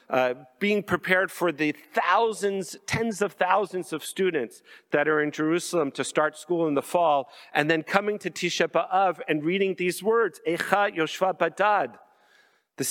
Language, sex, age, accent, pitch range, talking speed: English, male, 50-69, American, 155-195 Hz, 165 wpm